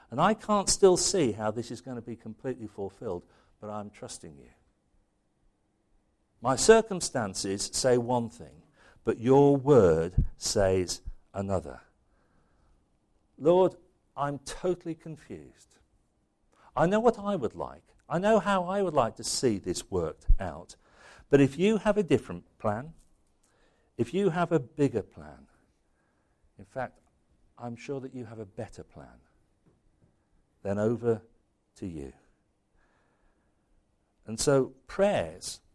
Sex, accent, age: male, British, 50-69